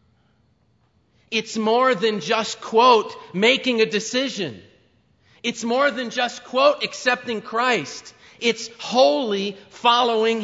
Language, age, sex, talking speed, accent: English, 40-59, male, 105 wpm, American